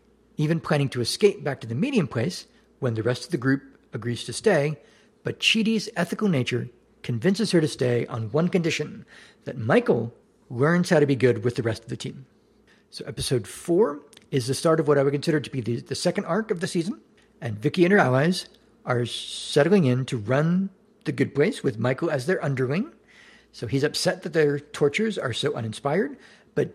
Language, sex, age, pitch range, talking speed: English, male, 50-69, 130-195 Hz, 200 wpm